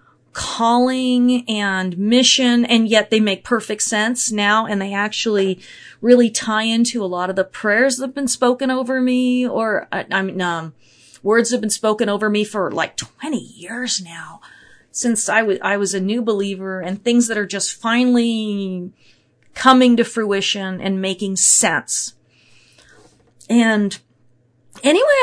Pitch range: 195-245 Hz